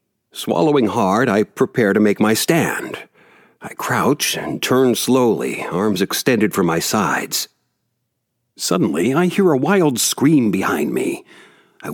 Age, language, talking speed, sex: 60-79, English, 135 wpm, male